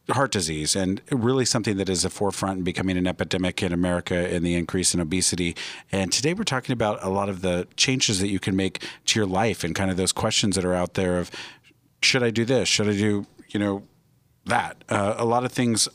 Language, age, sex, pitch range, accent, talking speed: English, 50-69, male, 95-120 Hz, American, 235 wpm